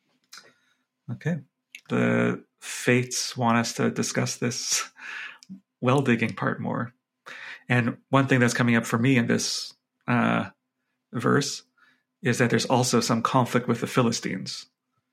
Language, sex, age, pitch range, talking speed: English, male, 30-49, 115-130 Hz, 130 wpm